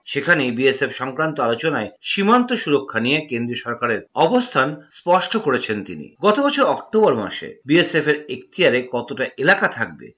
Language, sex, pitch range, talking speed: Bengali, male, 125-200 Hz, 135 wpm